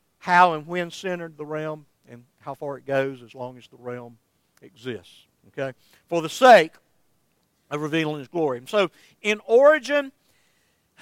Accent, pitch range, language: American, 150-185 Hz, English